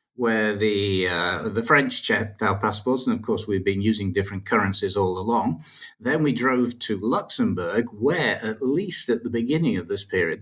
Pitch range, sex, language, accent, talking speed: 90-110 Hz, male, English, British, 185 wpm